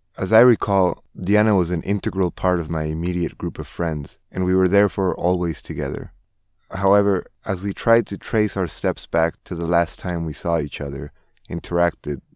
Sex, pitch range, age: male, 85-100 Hz, 20-39